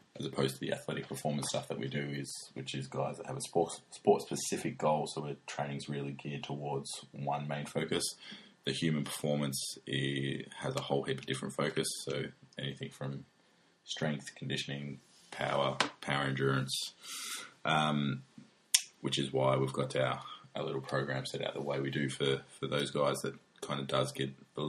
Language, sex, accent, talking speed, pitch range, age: English, male, Australian, 180 wpm, 70-75 Hz, 20-39